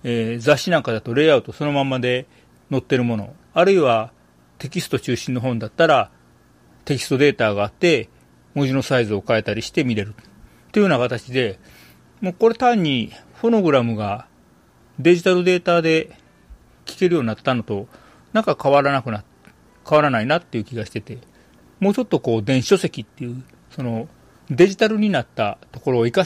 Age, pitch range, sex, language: 40-59, 110-165 Hz, male, Japanese